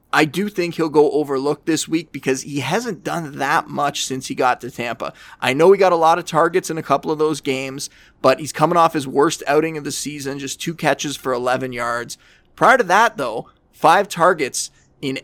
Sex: male